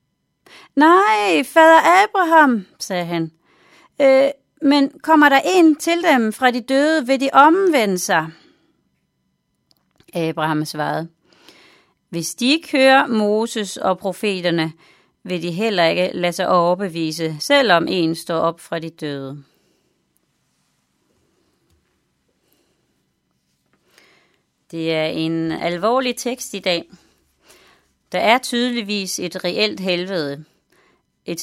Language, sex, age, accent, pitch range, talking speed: Danish, female, 30-49, native, 175-260 Hz, 105 wpm